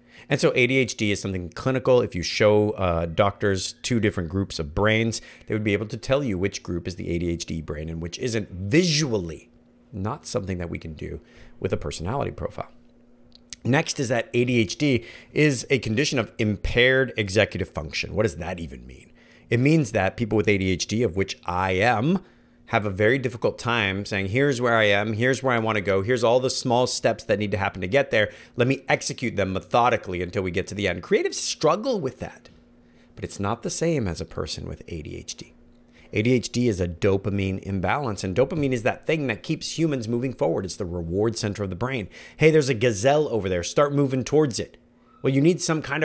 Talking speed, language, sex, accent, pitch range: 205 wpm, English, male, American, 95-130 Hz